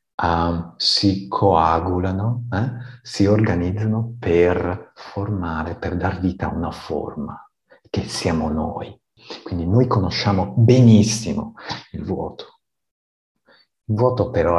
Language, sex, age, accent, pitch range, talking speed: Italian, male, 50-69, native, 90-115 Hz, 105 wpm